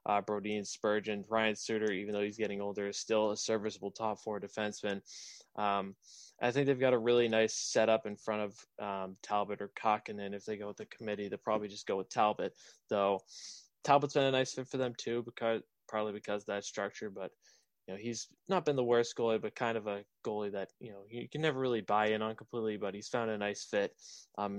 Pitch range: 105-120 Hz